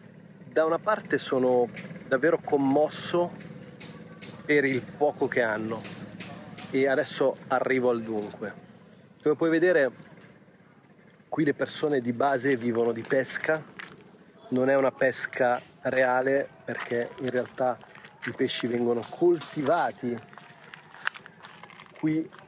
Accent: native